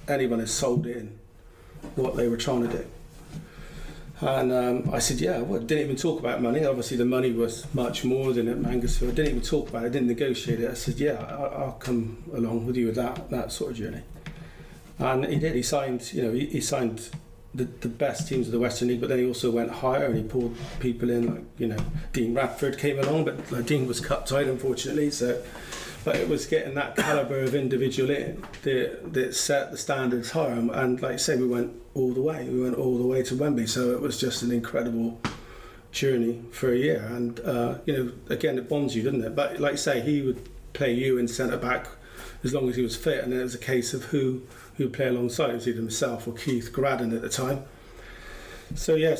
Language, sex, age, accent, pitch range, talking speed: English, male, 40-59, British, 120-140 Hz, 230 wpm